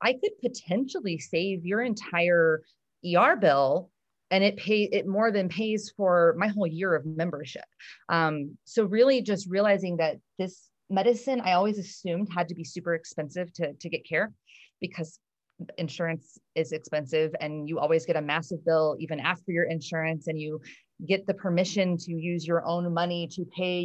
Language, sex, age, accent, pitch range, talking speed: English, female, 30-49, American, 160-195 Hz, 170 wpm